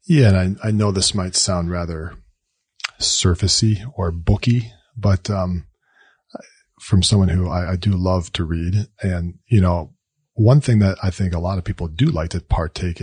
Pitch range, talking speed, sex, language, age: 90-110 Hz, 180 wpm, male, English, 40-59